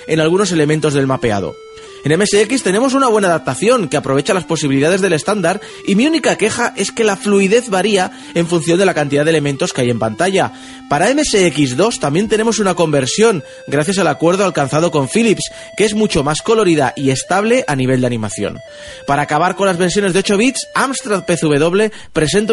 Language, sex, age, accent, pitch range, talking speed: Spanish, male, 30-49, Spanish, 150-220 Hz, 190 wpm